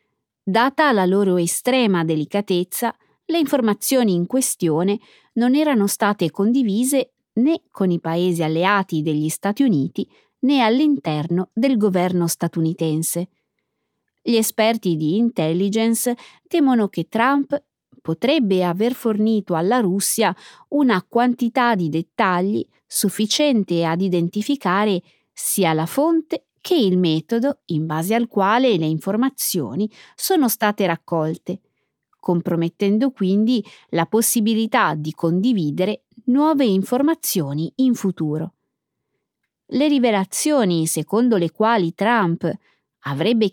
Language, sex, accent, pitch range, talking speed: Italian, female, native, 170-245 Hz, 105 wpm